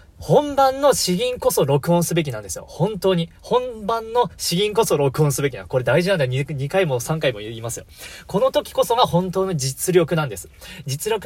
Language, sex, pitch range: Japanese, male, 145-205 Hz